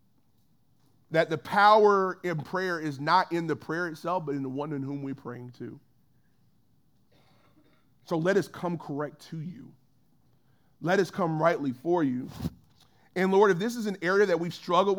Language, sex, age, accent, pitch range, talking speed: English, male, 30-49, American, 135-190 Hz, 170 wpm